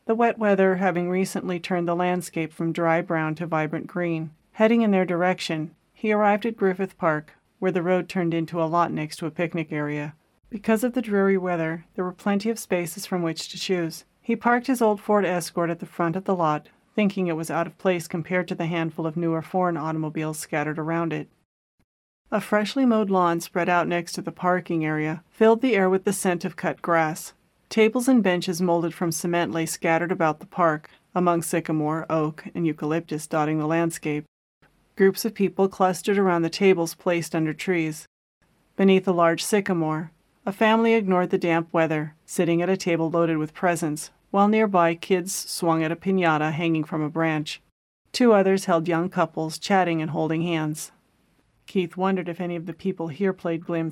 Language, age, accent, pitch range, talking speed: English, 40-59, American, 160-190 Hz, 195 wpm